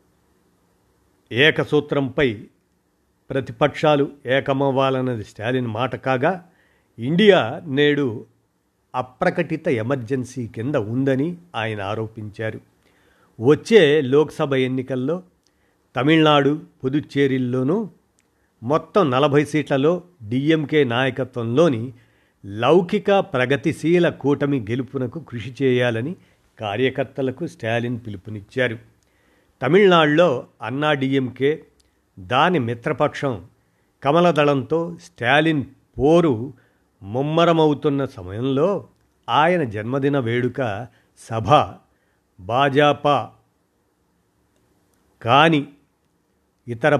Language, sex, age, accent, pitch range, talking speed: Telugu, male, 50-69, native, 120-150 Hz, 65 wpm